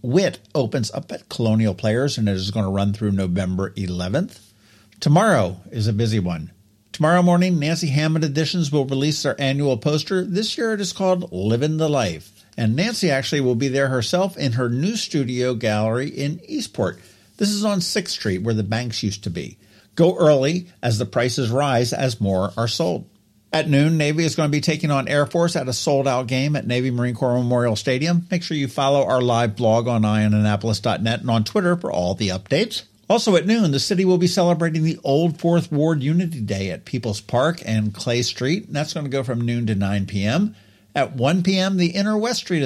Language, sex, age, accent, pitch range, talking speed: English, male, 50-69, American, 110-170 Hz, 205 wpm